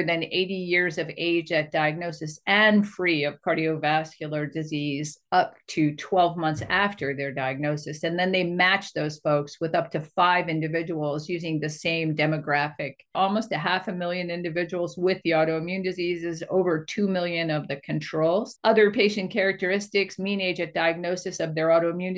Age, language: 50-69, English